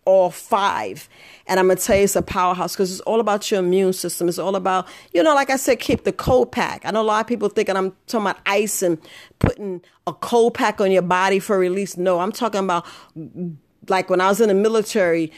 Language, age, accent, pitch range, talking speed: English, 40-59, American, 185-225 Hz, 240 wpm